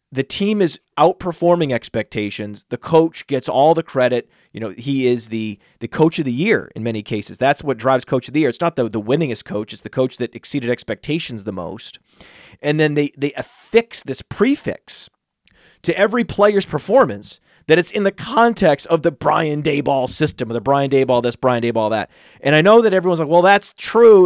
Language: English